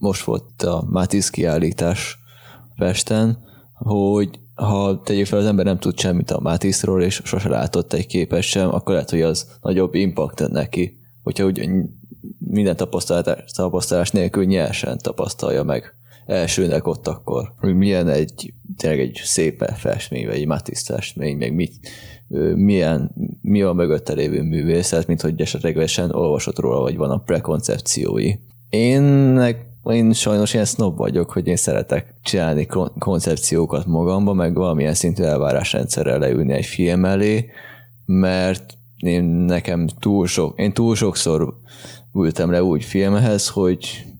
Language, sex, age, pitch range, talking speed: Hungarian, male, 20-39, 90-115 Hz, 135 wpm